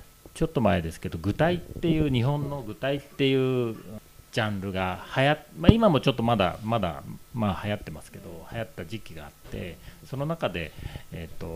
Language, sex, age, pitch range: Japanese, male, 40-59, 90-140 Hz